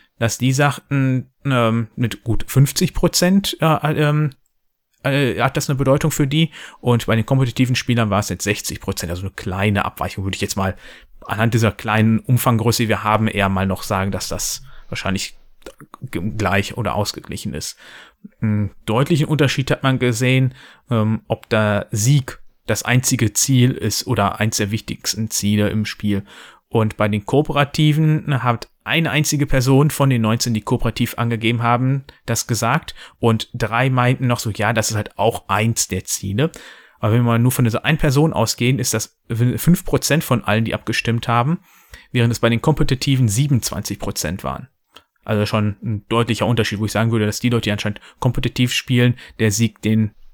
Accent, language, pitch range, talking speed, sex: German, German, 105-130 Hz, 175 wpm, male